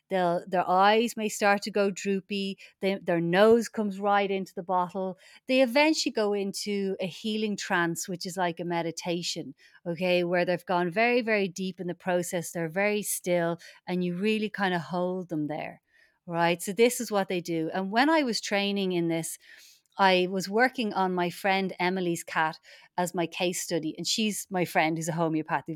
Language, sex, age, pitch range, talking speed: English, female, 30-49, 175-235 Hz, 185 wpm